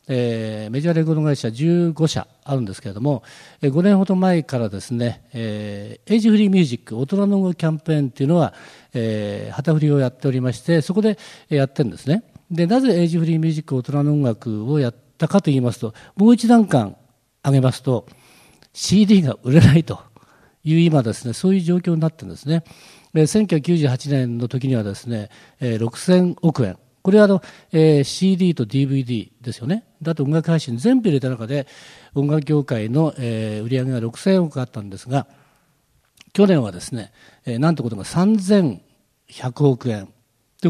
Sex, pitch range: male, 125-170 Hz